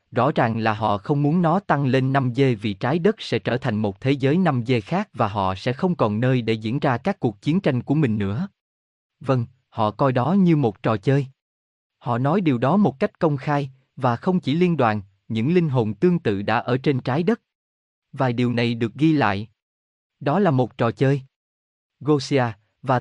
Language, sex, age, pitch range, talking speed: Vietnamese, male, 20-39, 110-155 Hz, 210 wpm